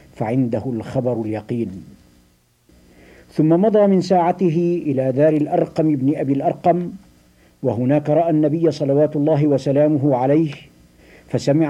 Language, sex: Arabic, male